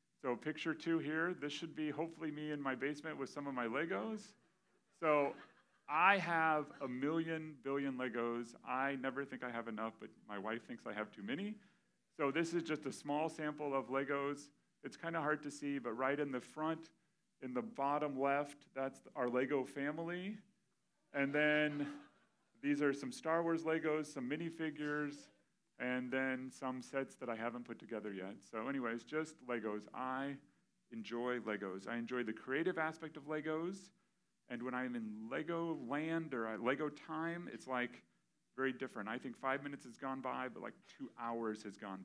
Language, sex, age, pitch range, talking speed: English, male, 40-59, 125-155 Hz, 180 wpm